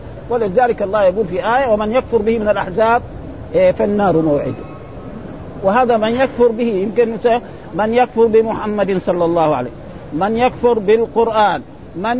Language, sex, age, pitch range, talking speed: Arabic, male, 50-69, 195-240 Hz, 135 wpm